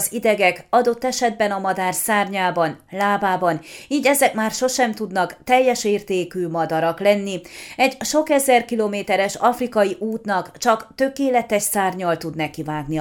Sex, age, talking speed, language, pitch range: female, 30-49, 135 wpm, Hungarian, 180-230 Hz